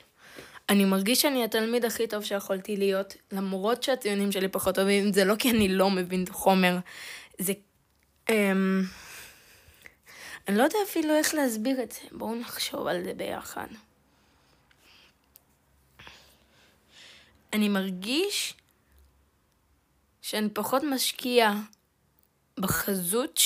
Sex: female